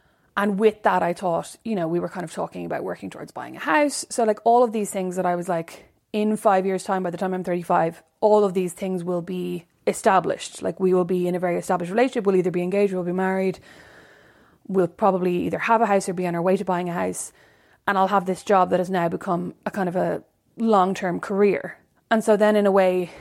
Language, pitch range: English, 175-200 Hz